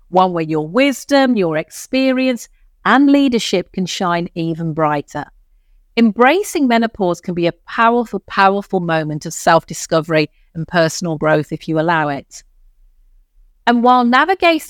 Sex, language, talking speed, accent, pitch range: female, English, 130 wpm, British, 165-215 Hz